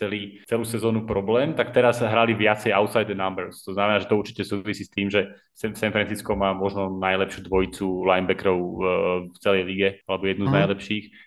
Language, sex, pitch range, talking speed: Slovak, male, 100-115 Hz, 190 wpm